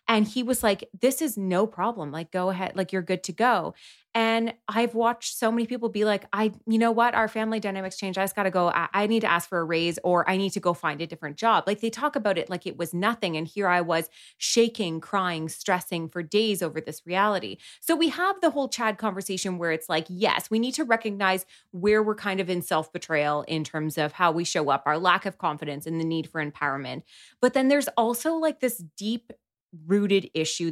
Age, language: 20-39, English